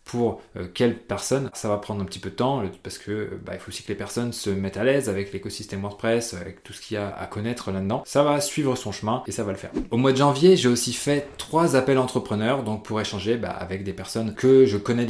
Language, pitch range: French, 105-125 Hz